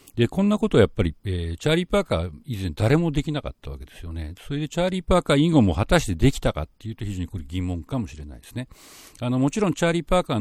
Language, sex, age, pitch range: Japanese, male, 50-69, 90-135 Hz